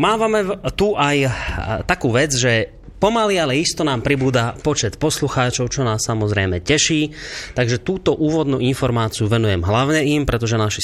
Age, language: 30-49, Slovak